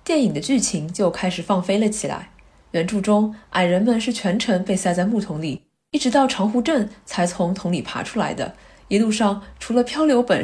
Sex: female